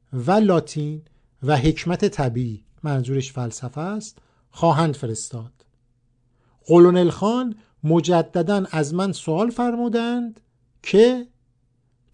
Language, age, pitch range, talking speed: Persian, 50-69, 130-200 Hz, 90 wpm